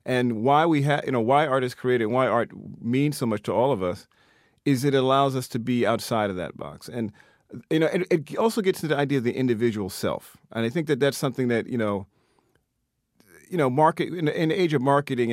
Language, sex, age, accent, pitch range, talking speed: English, male, 40-59, American, 110-145 Hz, 245 wpm